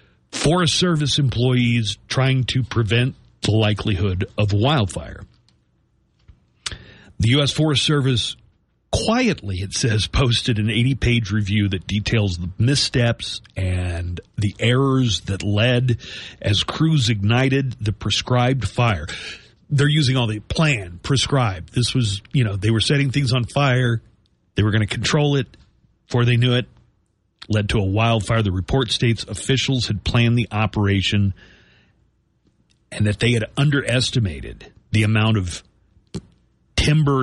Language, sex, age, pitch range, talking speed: English, male, 40-59, 100-125 Hz, 135 wpm